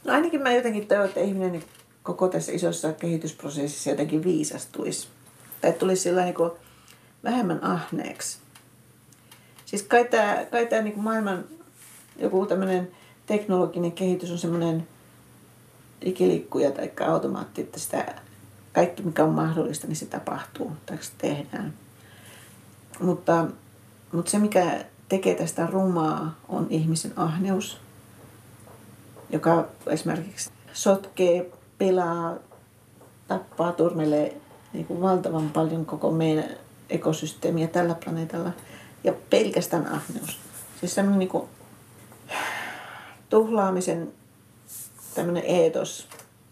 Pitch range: 135-185 Hz